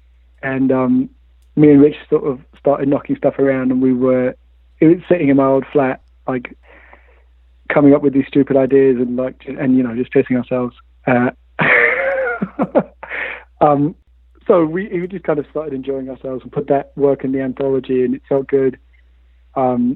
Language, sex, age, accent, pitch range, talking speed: English, male, 30-49, British, 120-140 Hz, 175 wpm